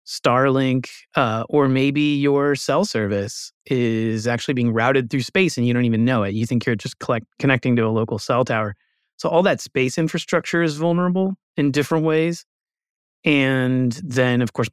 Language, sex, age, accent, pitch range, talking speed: English, male, 30-49, American, 110-140 Hz, 175 wpm